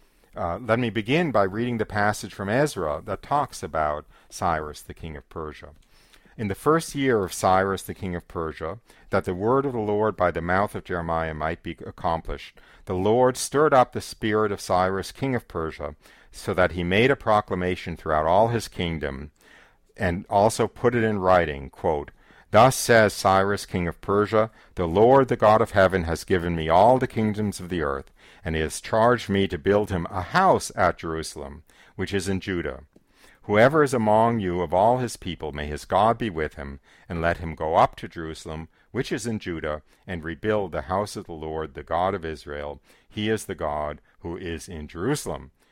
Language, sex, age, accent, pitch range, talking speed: English, male, 50-69, American, 80-110 Hz, 195 wpm